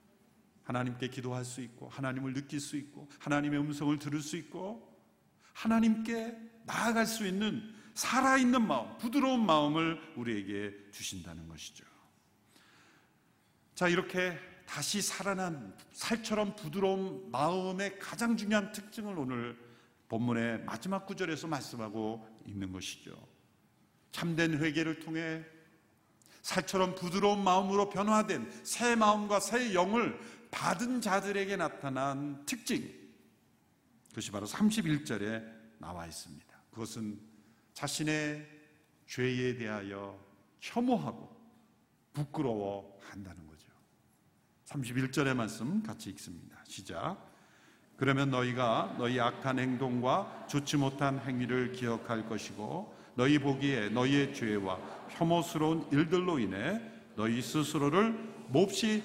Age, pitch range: 50-69, 120-200 Hz